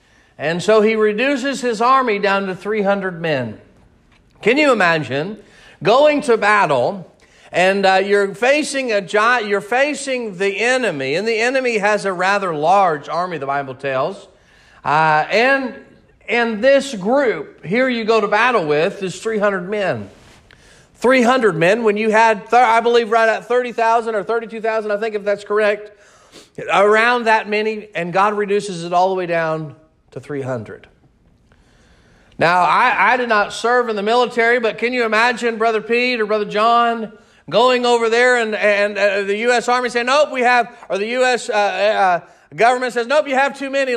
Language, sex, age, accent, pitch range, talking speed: English, male, 40-59, American, 205-255 Hz, 170 wpm